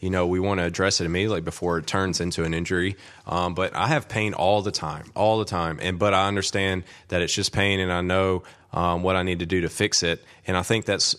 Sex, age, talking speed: male, 20-39, 265 wpm